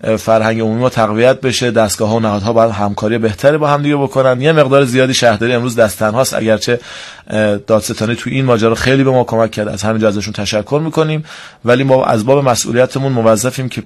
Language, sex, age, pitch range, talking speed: Persian, male, 30-49, 110-140 Hz, 190 wpm